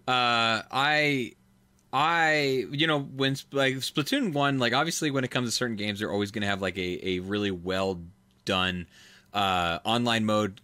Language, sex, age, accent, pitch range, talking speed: English, male, 20-39, American, 95-120 Hz, 175 wpm